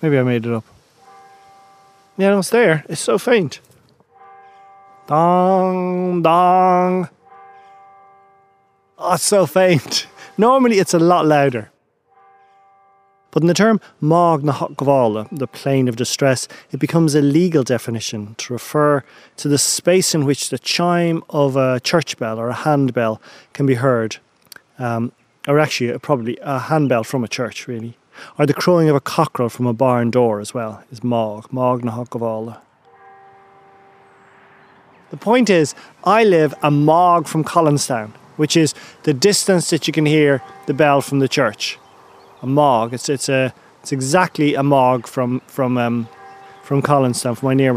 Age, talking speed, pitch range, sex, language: 30-49, 150 wpm, 125-180 Hz, male, English